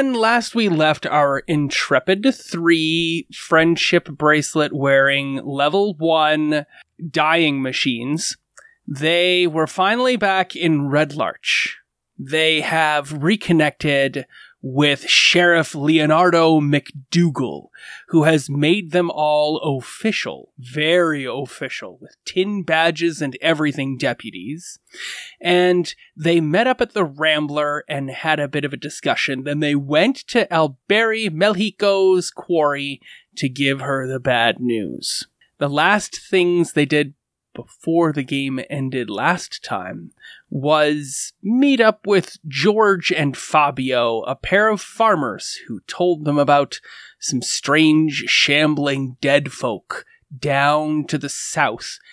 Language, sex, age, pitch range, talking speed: English, male, 30-49, 140-180 Hz, 120 wpm